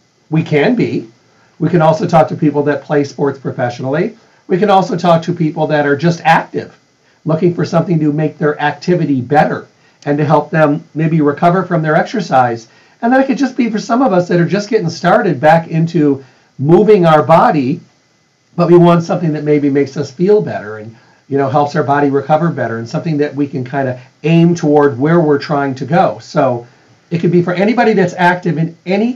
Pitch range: 140-175 Hz